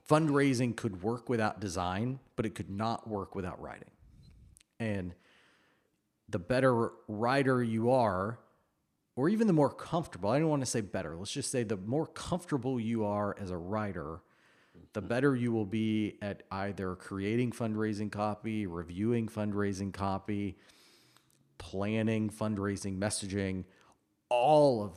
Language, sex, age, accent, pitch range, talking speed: English, male, 40-59, American, 100-120 Hz, 140 wpm